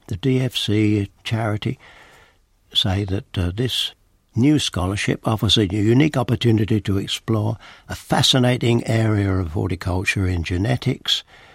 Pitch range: 95-115 Hz